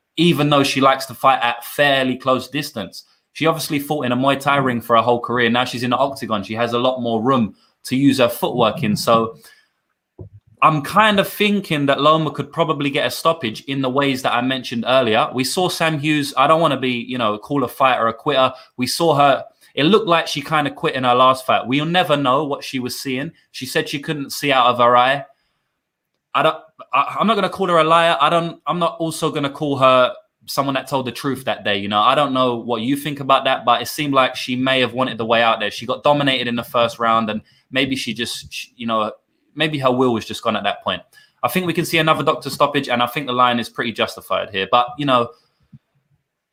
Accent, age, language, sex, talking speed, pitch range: British, 20-39, English, male, 250 wpm, 120-150 Hz